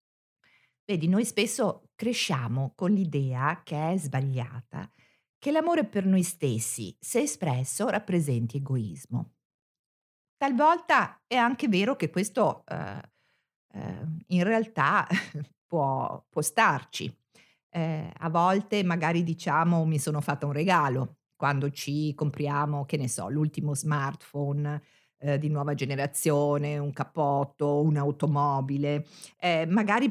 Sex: female